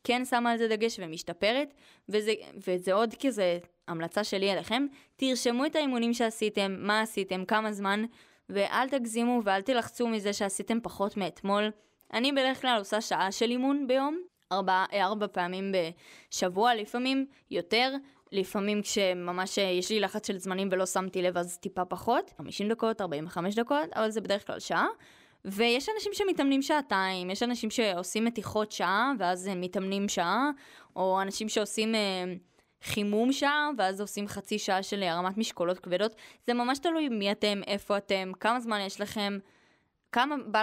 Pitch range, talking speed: 190-235 Hz, 155 wpm